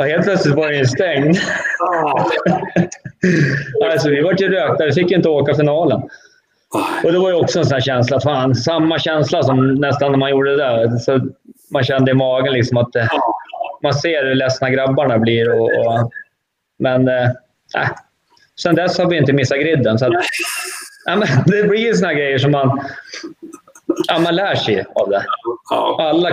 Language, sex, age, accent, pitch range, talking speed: Swedish, male, 20-39, native, 125-165 Hz, 180 wpm